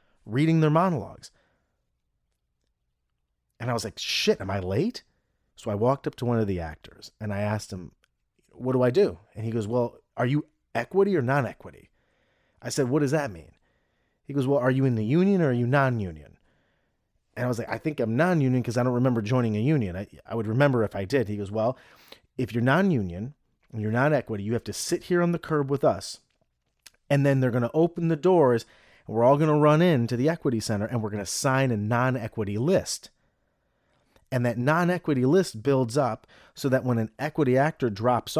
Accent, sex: American, male